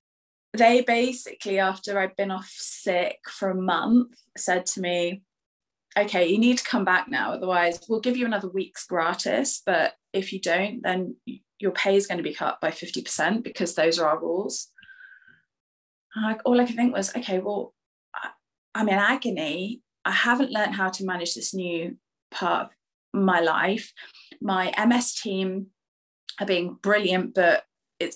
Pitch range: 180-220 Hz